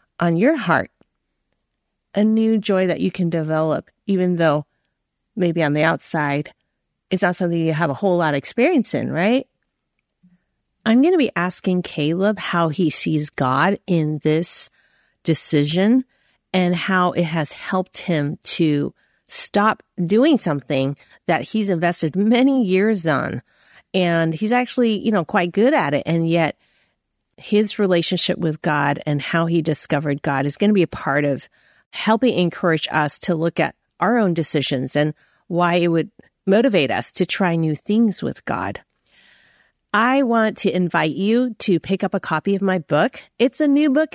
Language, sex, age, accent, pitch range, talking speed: English, female, 30-49, American, 160-215 Hz, 165 wpm